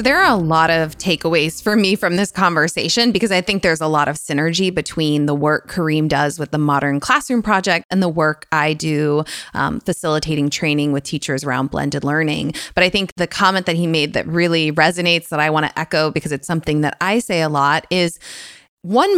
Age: 20-39